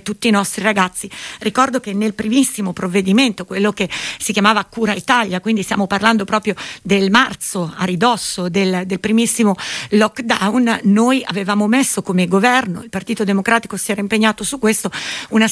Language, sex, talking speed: Italian, female, 160 wpm